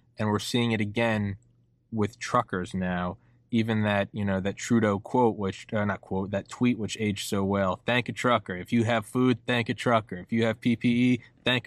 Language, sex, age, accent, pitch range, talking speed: English, male, 20-39, American, 100-120 Hz, 205 wpm